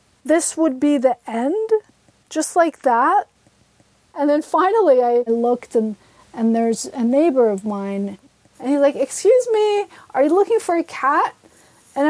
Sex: female